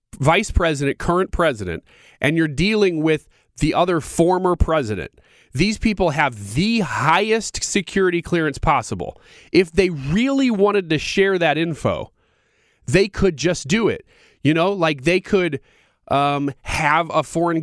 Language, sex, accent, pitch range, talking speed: English, male, American, 140-185 Hz, 145 wpm